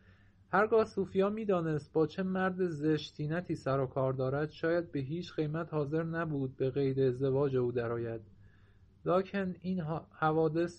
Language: Persian